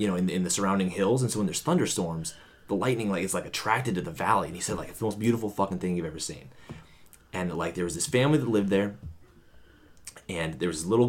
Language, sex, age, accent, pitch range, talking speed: English, male, 30-49, American, 90-115 Hz, 265 wpm